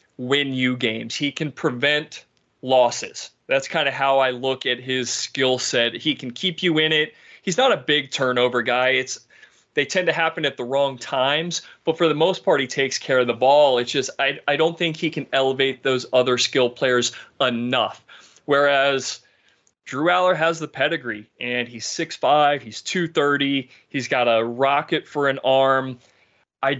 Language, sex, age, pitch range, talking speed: English, male, 30-49, 125-150 Hz, 185 wpm